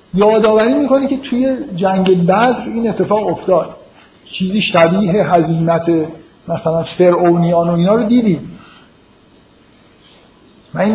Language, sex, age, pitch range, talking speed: Persian, male, 50-69, 170-225 Hz, 110 wpm